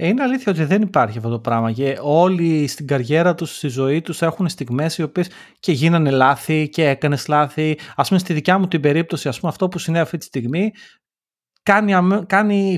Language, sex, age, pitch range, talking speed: Greek, male, 30-49, 140-180 Hz, 195 wpm